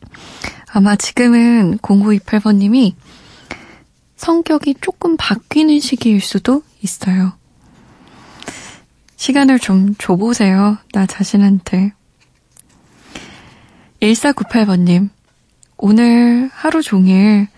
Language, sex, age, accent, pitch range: Korean, female, 20-39, native, 195-250 Hz